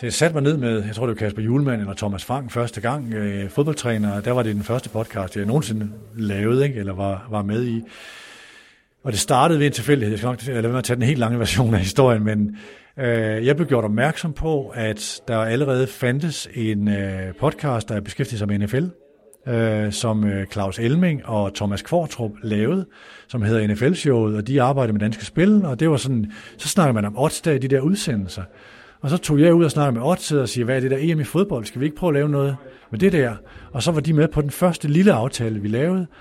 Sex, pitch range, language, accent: male, 110-145 Hz, Danish, native